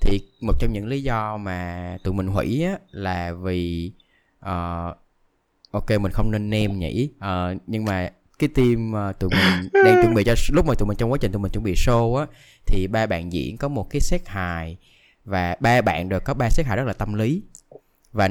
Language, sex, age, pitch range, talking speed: Vietnamese, male, 20-39, 95-125 Hz, 205 wpm